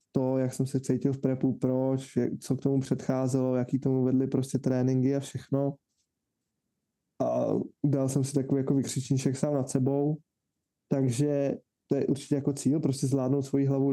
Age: 20-39